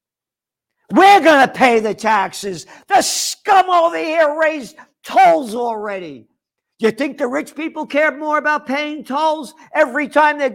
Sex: male